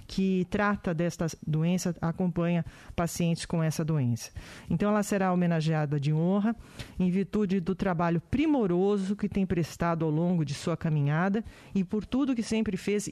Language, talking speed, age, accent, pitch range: Portuguese, 155 wpm, 40-59, Brazilian, 160-195 Hz